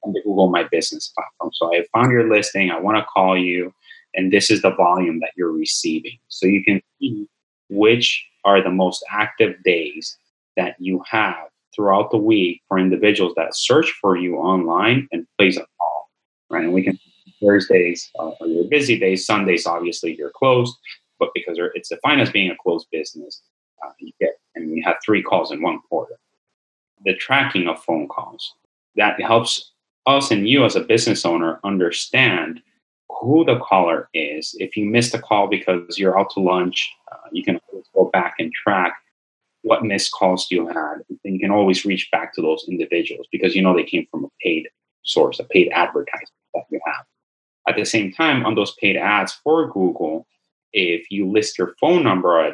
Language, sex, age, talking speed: English, male, 30-49, 195 wpm